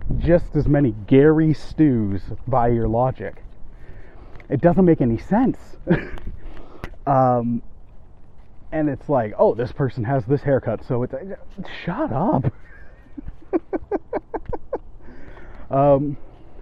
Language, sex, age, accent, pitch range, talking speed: English, male, 30-49, American, 100-155 Hz, 105 wpm